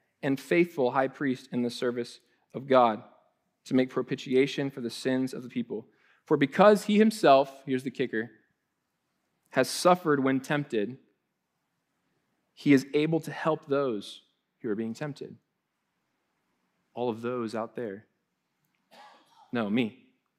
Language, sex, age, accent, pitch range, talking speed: English, male, 20-39, American, 125-165 Hz, 135 wpm